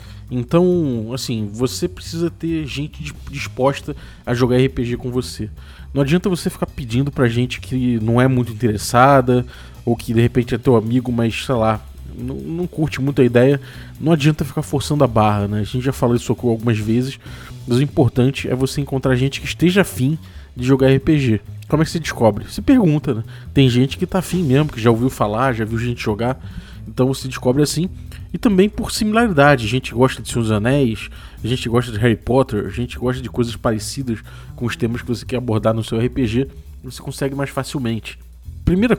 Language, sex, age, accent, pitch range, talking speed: Portuguese, male, 20-39, Brazilian, 115-140 Hz, 200 wpm